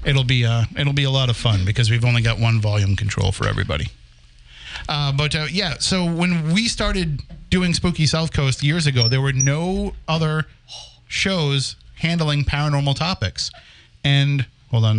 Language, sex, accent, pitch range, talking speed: English, male, American, 120-155 Hz, 170 wpm